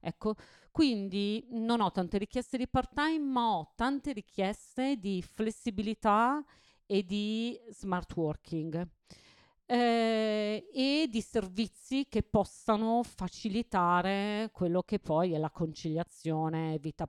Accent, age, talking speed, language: native, 40-59, 115 wpm, Italian